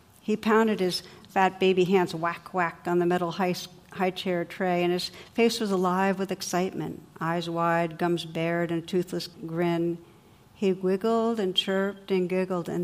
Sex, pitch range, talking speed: female, 170-195 Hz, 160 wpm